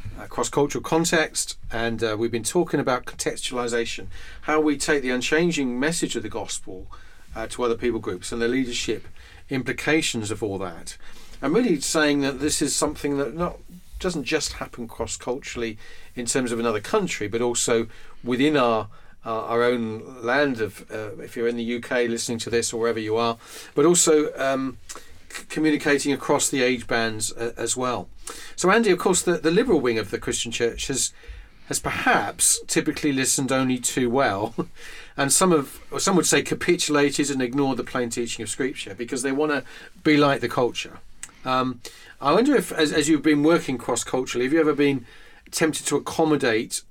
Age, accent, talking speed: 40-59, British, 180 wpm